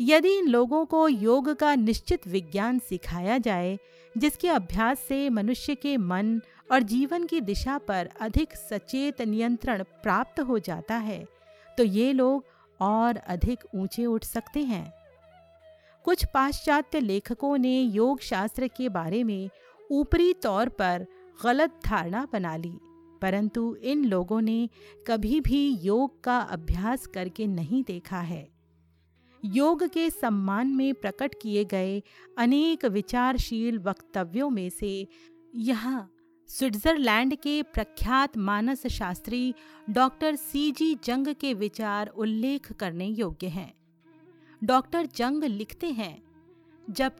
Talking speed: 125 wpm